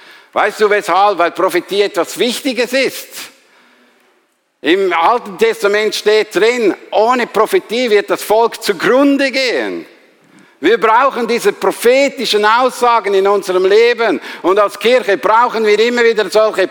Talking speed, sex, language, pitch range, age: 130 wpm, male, German, 195-245 Hz, 50-69